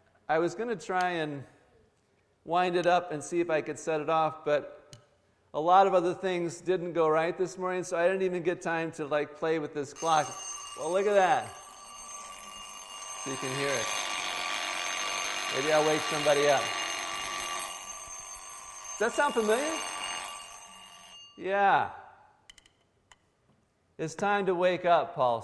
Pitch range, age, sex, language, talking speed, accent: 170-240 Hz, 50-69, male, English, 155 wpm, American